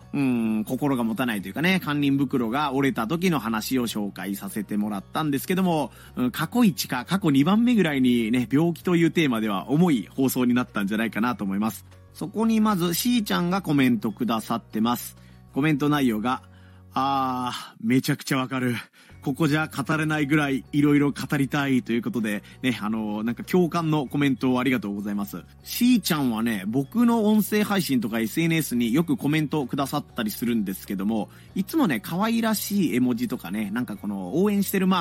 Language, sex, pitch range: Japanese, male, 115-170 Hz